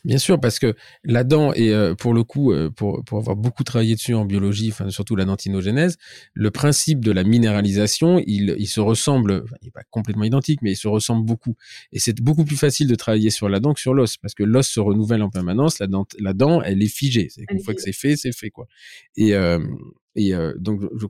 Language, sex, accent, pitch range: French, male, French, 105-135 Hz